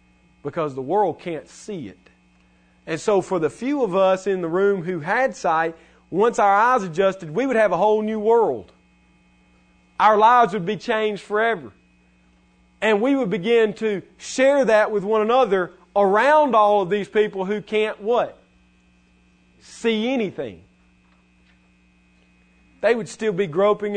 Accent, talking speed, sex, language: American, 155 wpm, male, English